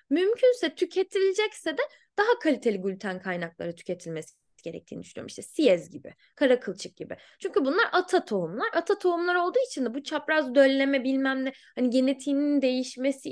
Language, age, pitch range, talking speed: Turkish, 10-29, 225-335 Hz, 145 wpm